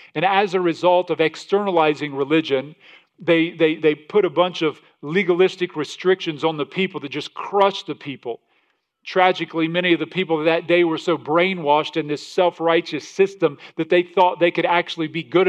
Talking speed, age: 180 wpm, 40-59